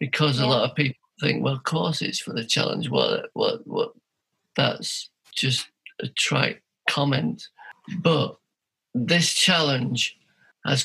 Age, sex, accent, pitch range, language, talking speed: 50-69, male, British, 135-155 Hz, English, 140 wpm